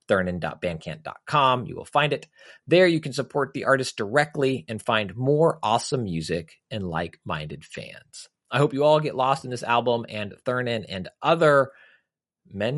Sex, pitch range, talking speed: male, 105-140 Hz, 160 wpm